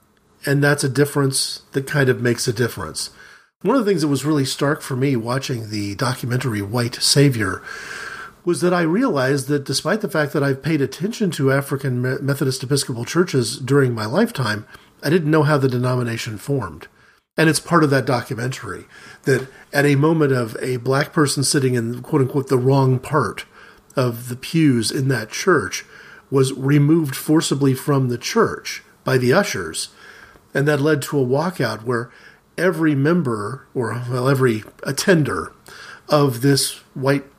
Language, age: English, 40-59